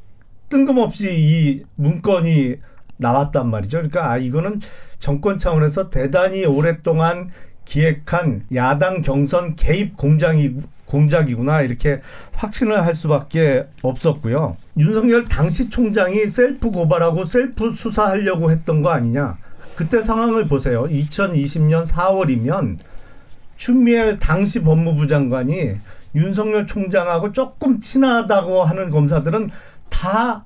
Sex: male